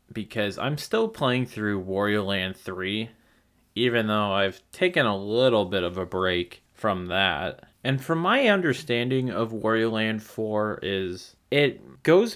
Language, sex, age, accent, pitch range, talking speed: English, male, 30-49, American, 100-130 Hz, 150 wpm